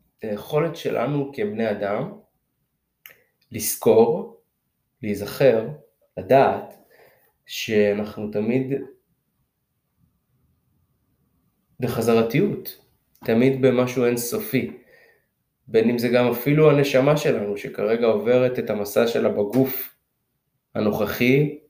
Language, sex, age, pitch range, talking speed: Hebrew, male, 20-39, 110-150 Hz, 75 wpm